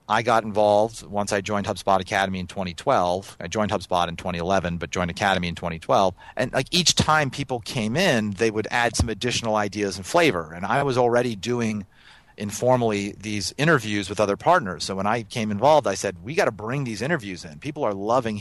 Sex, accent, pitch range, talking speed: male, American, 95-120 Hz, 205 wpm